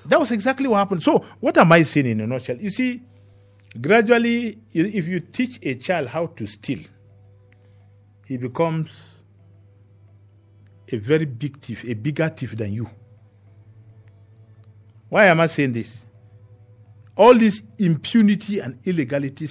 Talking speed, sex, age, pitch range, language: 140 wpm, male, 50-69, 100-165 Hz, English